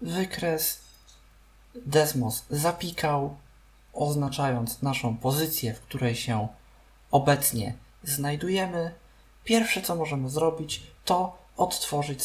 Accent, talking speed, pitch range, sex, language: native, 85 wpm, 125-180 Hz, male, Polish